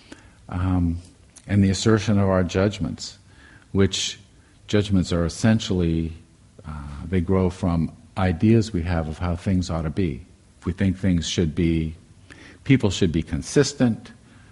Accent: American